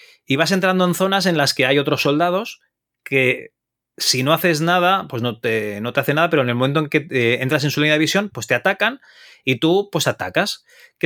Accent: Spanish